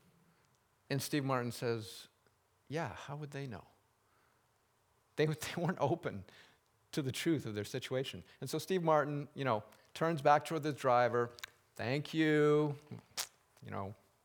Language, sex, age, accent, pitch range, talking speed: English, male, 50-69, American, 120-180 Hz, 145 wpm